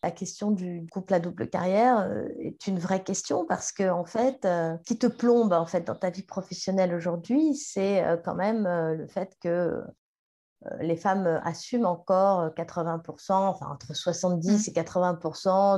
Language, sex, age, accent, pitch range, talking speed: French, female, 30-49, French, 180-225 Hz, 170 wpm